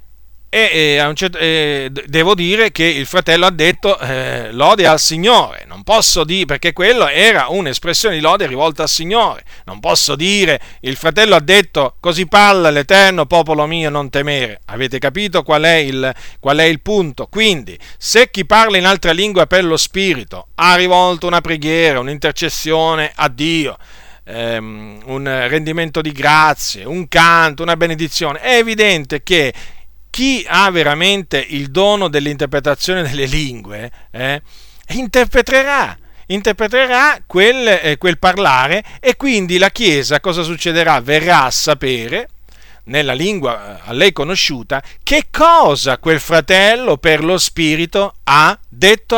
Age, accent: 40-59, native